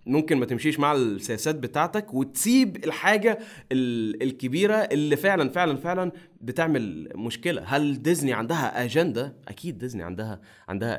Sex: male